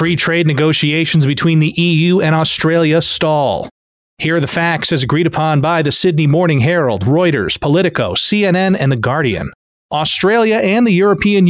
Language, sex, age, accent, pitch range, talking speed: English, male, 30-49, American, 135-170 Hz, 160 wpm